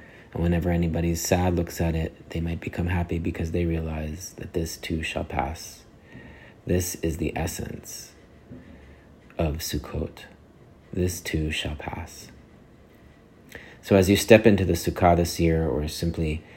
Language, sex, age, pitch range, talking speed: English, male, 30-49, 80-90 Hz, 145 wpm